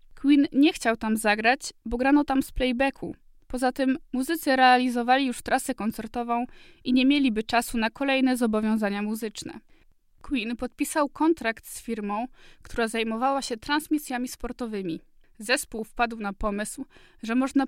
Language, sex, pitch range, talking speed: Polish, female, 225-275 Hz, 140 wpm